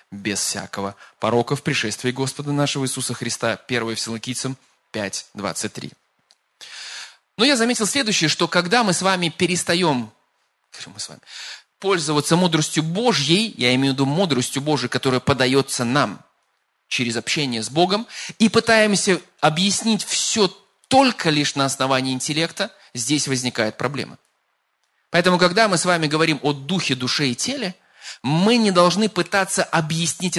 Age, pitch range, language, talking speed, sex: 20-39, 130-185 Hz, Russian, 130 wpm, male